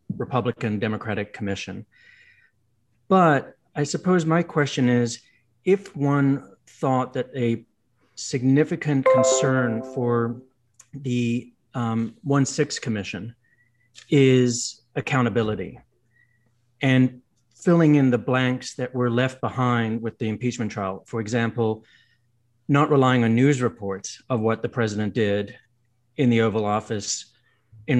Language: English